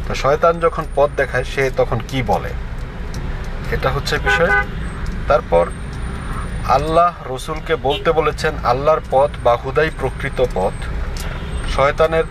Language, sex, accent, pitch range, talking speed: Bengali, male, native, 125-155 Hz, 110 wpm